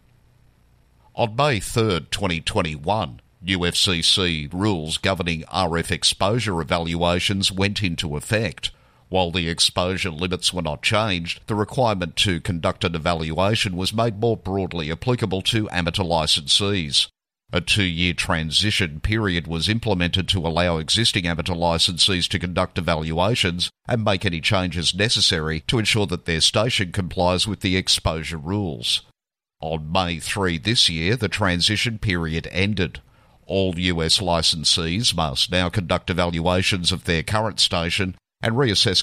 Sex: male